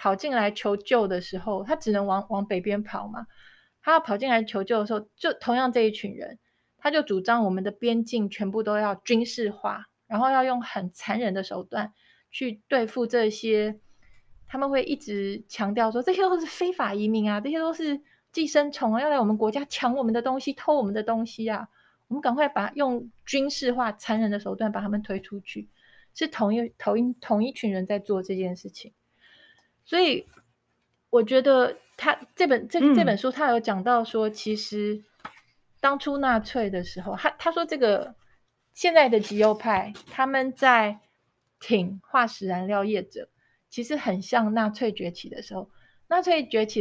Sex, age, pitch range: female, 30-49, 210-265 Hz